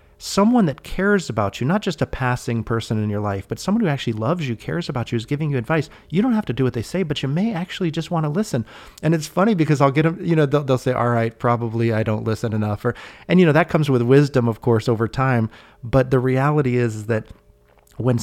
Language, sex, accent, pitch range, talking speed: English, male, American, 105-135 Hz, 260 wpm